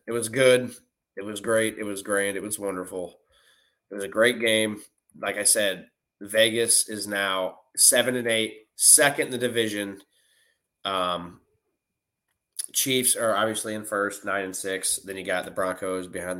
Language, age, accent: English, 20-39, American